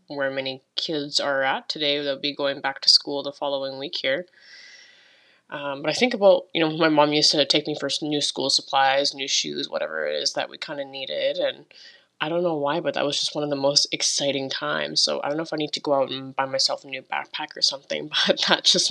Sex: female